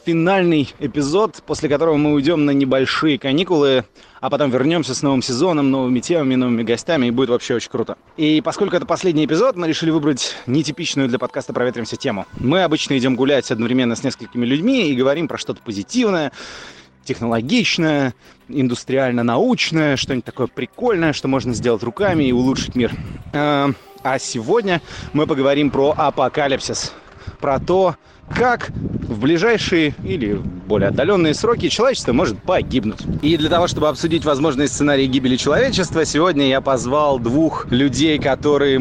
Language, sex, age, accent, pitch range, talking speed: Russian, male, 30-49, native, 125-155 Hz, 145 wpm